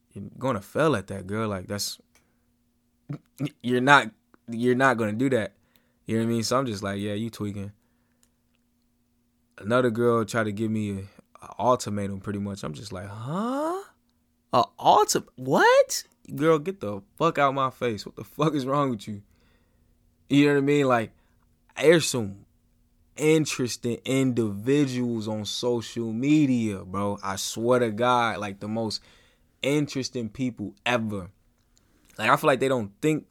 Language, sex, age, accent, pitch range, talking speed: English, male, 20-39, American, 105-130 Hz, 160 wpm